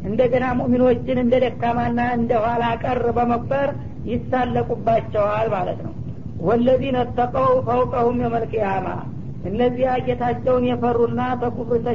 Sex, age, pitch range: female, 50-69, 235-250 Hz